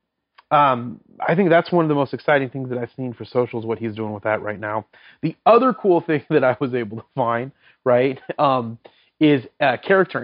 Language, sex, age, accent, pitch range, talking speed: English, male, 30-49, American, 115-145 Hz, 225 wpm